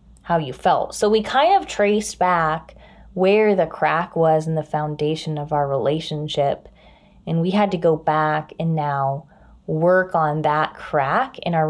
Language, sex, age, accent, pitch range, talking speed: English, female, 20-39, American, 160-205 Hz, 170 wpm